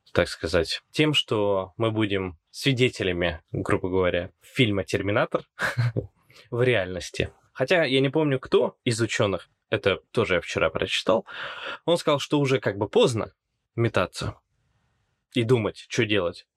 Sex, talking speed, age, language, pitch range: male, 135 wpm, 20-39, Russian, 100-135 Hz